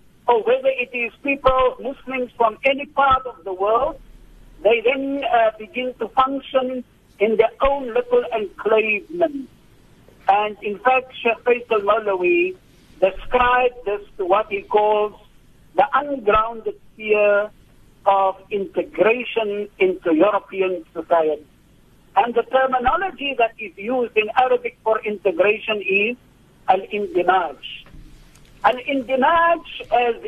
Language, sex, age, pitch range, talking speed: English, male, 60-79, 210-275 Hz, 115 wpm